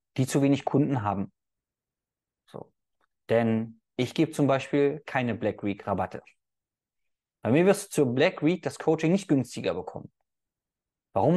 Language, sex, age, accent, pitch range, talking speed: German, male, 20-39, German, 120-165 Hz, 135 wpm